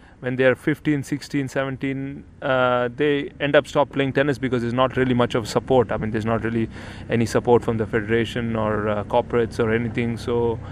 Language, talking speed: English, 200 wpm